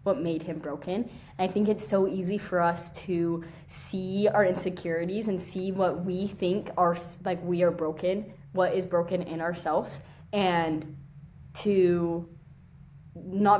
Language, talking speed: English, 150 wpm